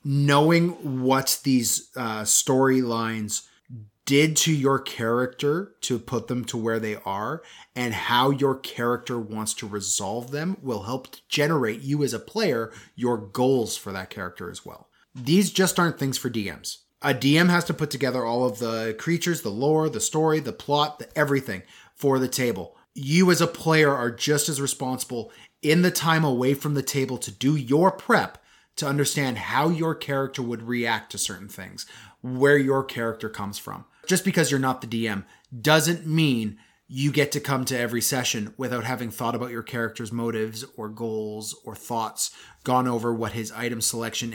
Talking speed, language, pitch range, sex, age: 175 wpm, English, 115-145 Hz, male, 30-49